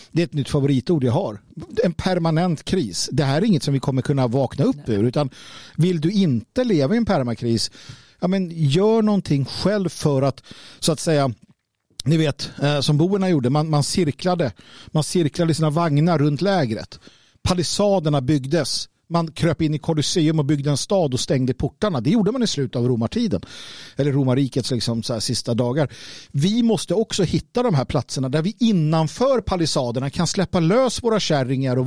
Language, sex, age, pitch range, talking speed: Swedish, male, 50-69, 140-185 Hz, 185 wpm